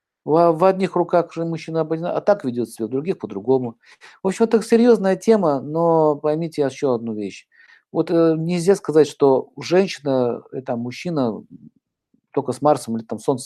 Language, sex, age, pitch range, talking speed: Russian, male, 50-69, 130-175 Hz, 165 wpm